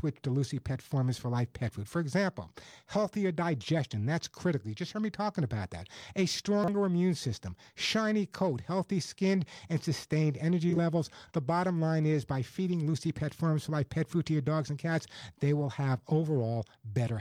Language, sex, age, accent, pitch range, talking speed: English, male, 50-69, American, 130-170 Hz, 195 wpm